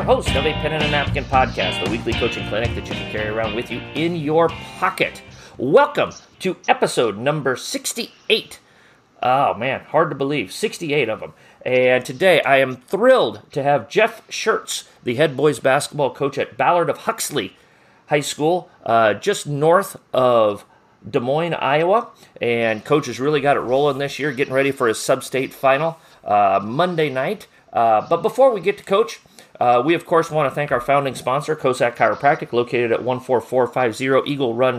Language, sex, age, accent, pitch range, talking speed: English, male, 40-59, American, 125-160 Hz, 180 wpm